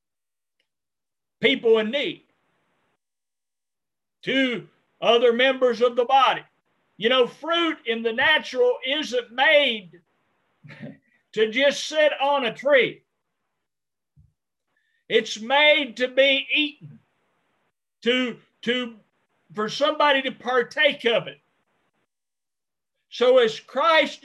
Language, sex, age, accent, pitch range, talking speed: English, male, 50-69, American, 240-295 Hz, 95 wpm